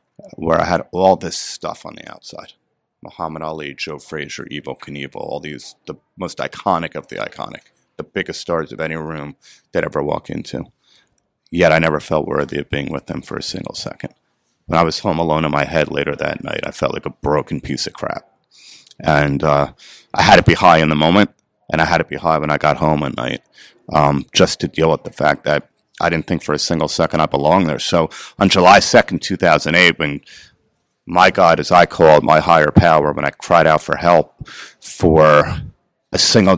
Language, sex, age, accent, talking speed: English, male, 30-49, American, 215 wpm